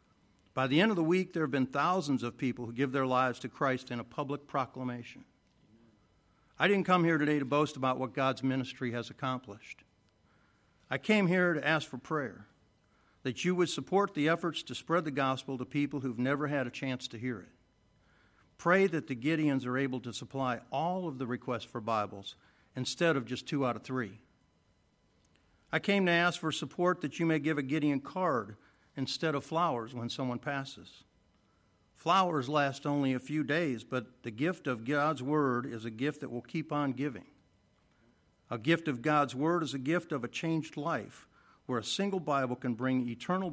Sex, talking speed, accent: male, 195 wpm, American